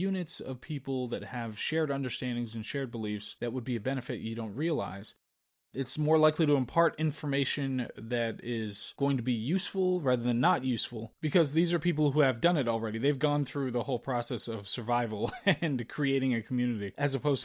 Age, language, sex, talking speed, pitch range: 20-39, English, male, 195 wpm, 120-150 Hz